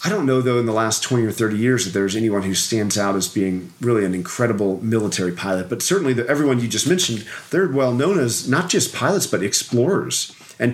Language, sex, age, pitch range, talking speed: English, male, 40-59, 95-125 Hz, 225 wpm